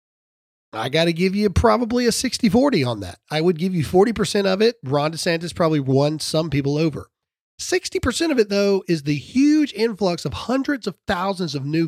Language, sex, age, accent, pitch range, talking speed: English, male, 40-59, American, 145-225 Hz, 190 wpm